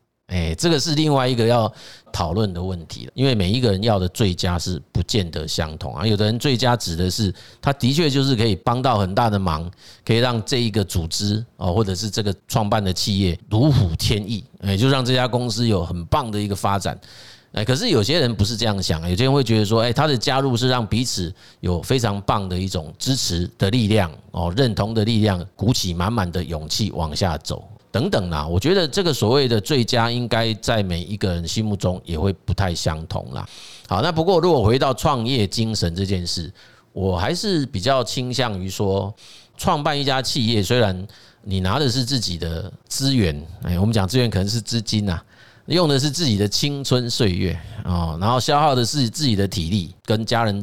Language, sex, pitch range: Chinese, male, 95-125 Hz